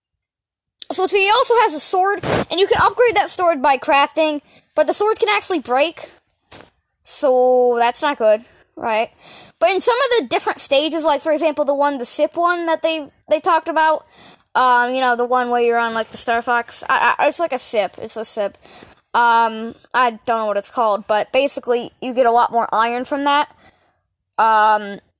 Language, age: English, 20-39